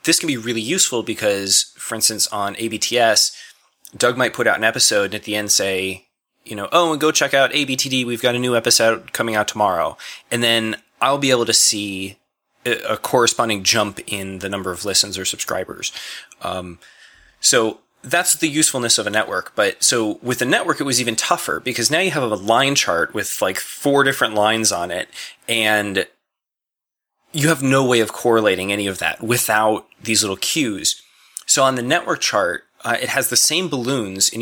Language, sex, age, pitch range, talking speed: English, male, 20-39, 100-125 Hz, 195 wpm